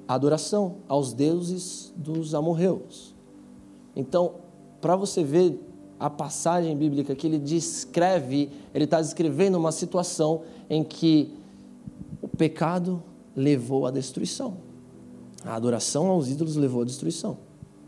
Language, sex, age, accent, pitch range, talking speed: Portuguese, male, 20-39, Brazilian, 140-190 Hz, 115 wpm